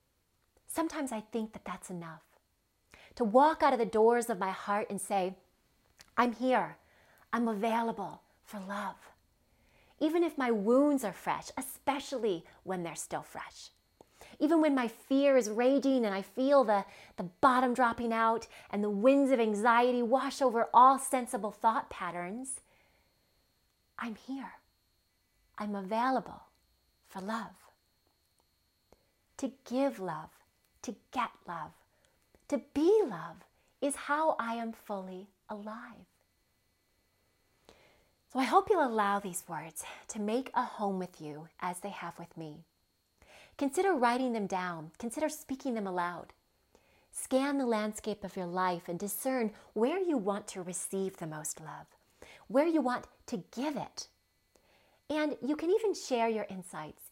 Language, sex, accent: English, female, American